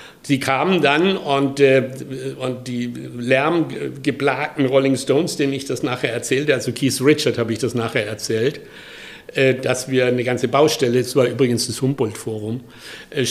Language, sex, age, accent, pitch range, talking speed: German, male, 60-79, German, 125-160 Hz, 160 wpm